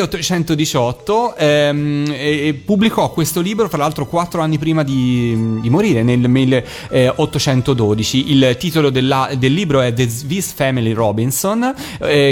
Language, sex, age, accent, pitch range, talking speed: Italian, male, 30-49, native, 120-160 Hz, 135 wpm